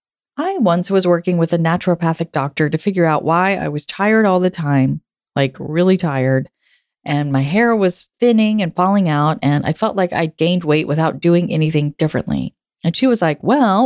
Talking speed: 195 wpm